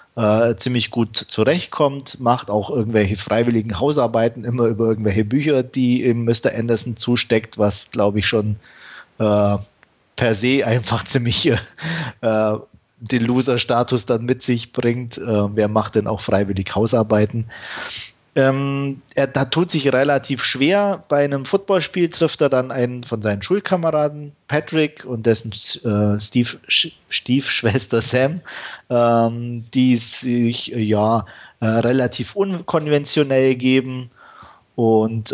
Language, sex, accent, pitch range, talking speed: German, male, German, 110-135 Hz, 120 wpm